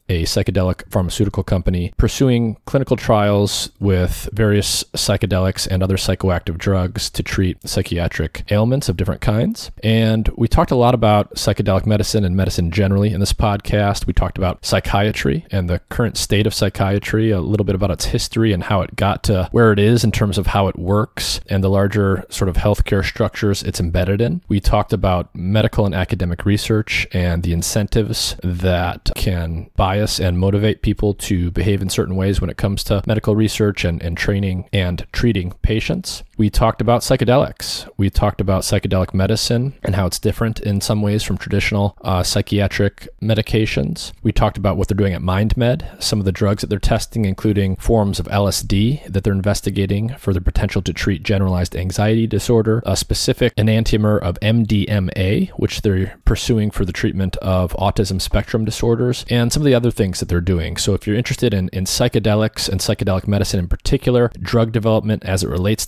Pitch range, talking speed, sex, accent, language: 95-110 Hz, 180 wpm, male, American, English